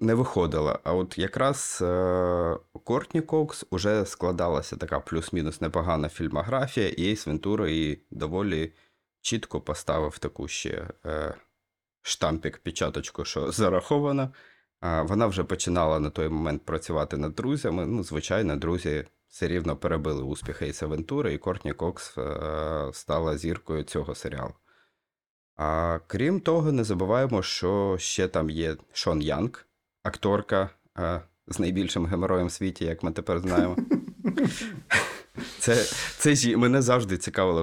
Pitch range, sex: 80-105 Hz, male